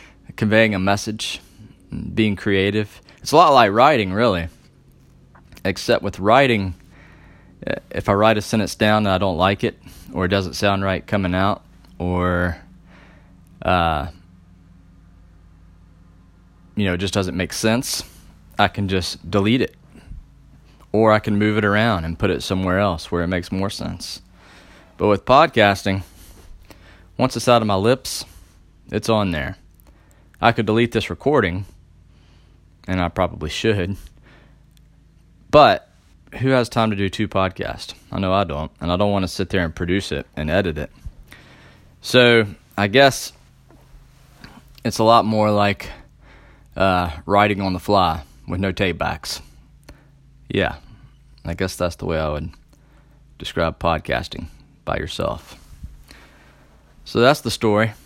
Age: 20-39